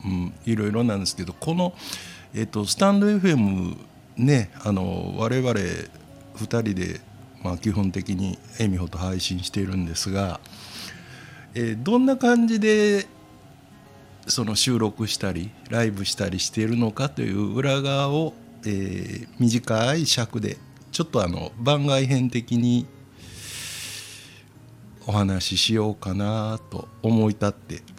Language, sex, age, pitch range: Japanese, male, 60-79, 100-135 Hz